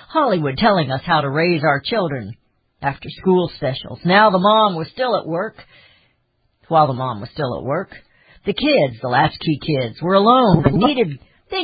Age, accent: 60-79, American